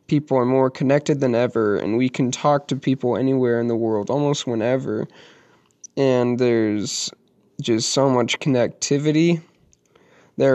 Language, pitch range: English, 115-140 Hz